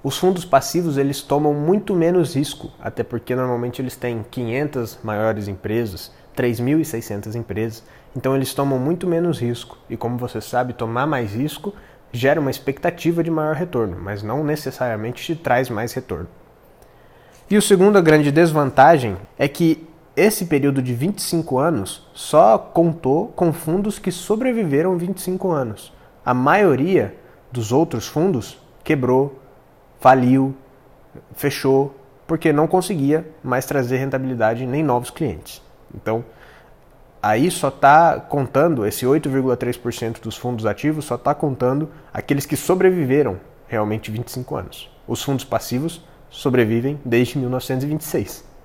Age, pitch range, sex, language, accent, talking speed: 20-39, 120-155 Hz, male, Portuguese, Brazilian, 130 wpm